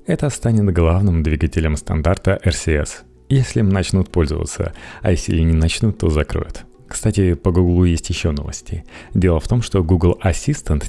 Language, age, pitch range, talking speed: Russian, 30-49, 80-100 Hz, 150 wpm